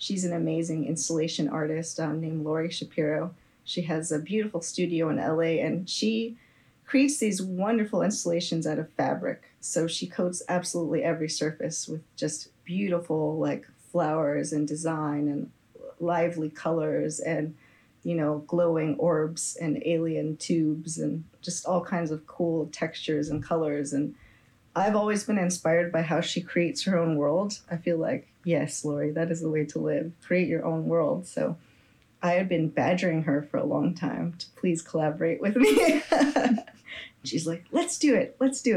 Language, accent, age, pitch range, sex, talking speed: English, American, 30-49, 155-180 Hz, female, 165 wpm